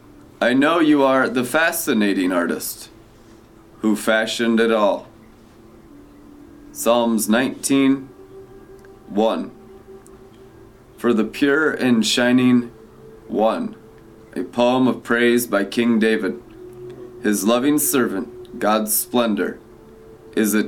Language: English